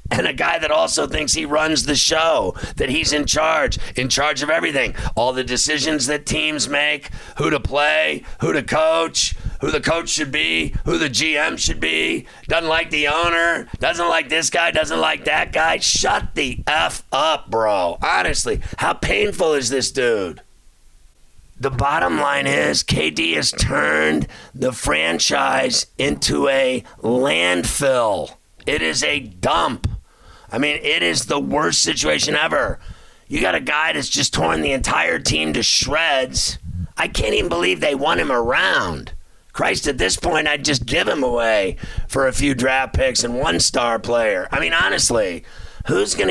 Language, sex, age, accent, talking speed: English, male, 40-59, American, 170 wpm